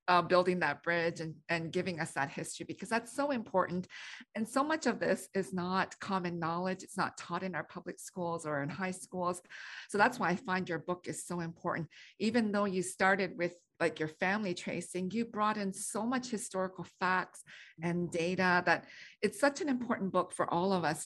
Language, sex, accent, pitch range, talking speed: English, female, American, 175-220 Hz, 205 wpm